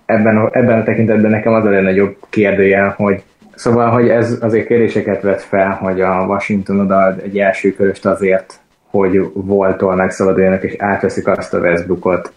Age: 20-39